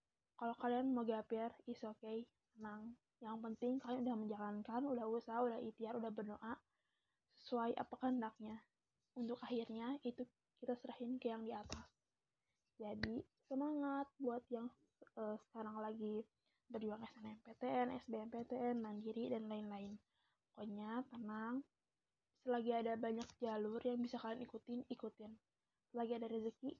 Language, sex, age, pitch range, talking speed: Indonesian, female, 20-39, 220-245 Hz, 130 wpm